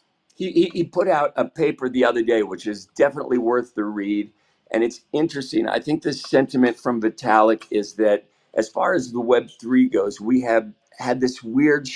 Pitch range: 110-145 Hz